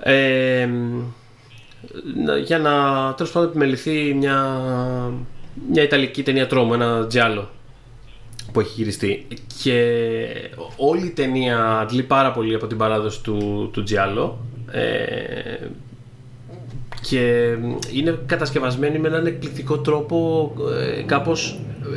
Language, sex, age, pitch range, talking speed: Greek, male, 30-49, 120-145 Hz, 95 wpm